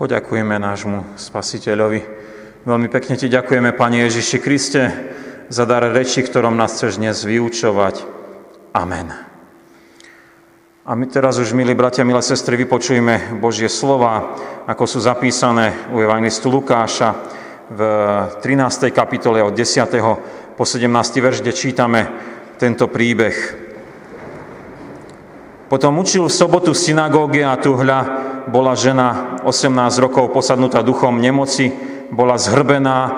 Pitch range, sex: 120-140 Hz, male